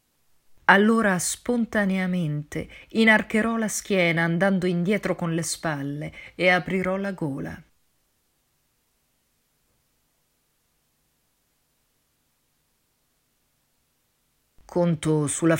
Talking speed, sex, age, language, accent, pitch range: 60 wpm, female, 40-59, Italian, native, 145-180 Hz